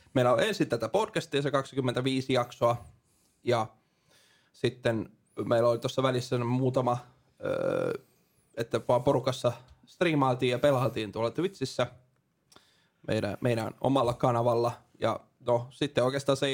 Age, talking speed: 20-39, 115 wpm